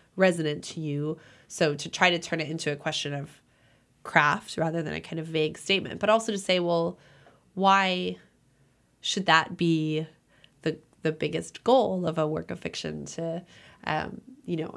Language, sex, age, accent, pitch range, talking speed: English, female, 20-39, American, 150-190 Hz, 175 wpm